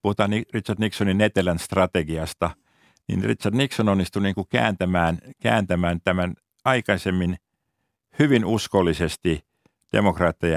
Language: Finnish